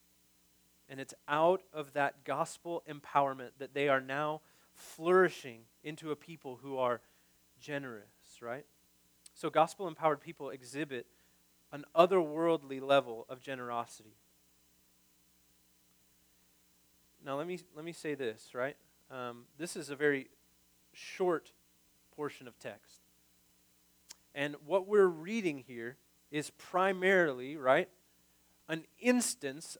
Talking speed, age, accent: 110 wpm, 30-49, American